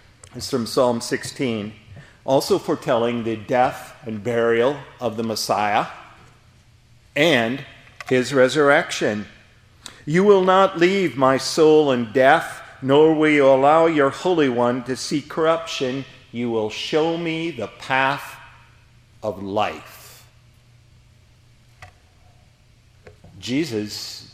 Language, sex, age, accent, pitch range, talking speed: English, male, 50-69, American, 110-150 Hz, 105 wpm